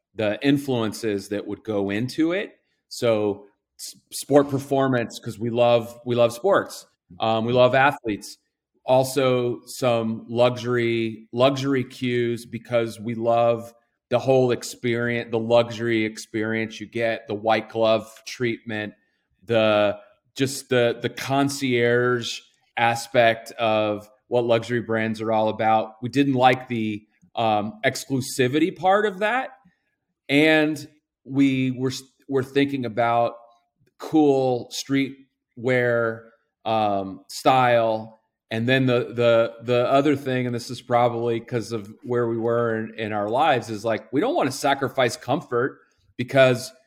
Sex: male